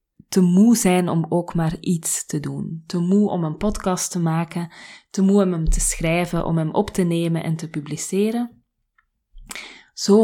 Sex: female